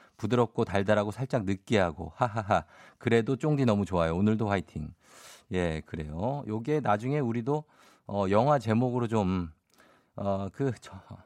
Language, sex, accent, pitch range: Korean, male, native, 95-130 Hz